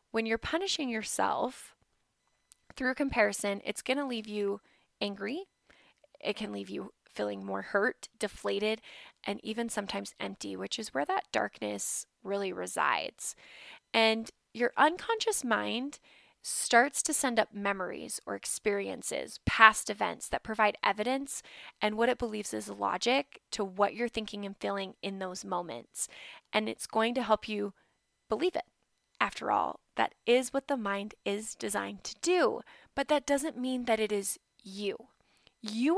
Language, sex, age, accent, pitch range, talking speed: English, female, 20-39, American, 200-260 Hz, 150 wpm